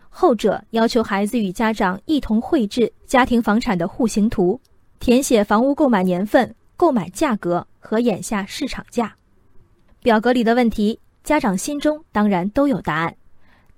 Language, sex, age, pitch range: Chinese, female, 20-39, 205-260 Hz